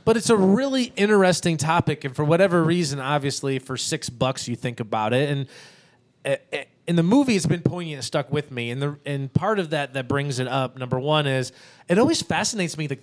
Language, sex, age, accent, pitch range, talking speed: English, male, 30-49, American, 130-175 Hz, 205 wpm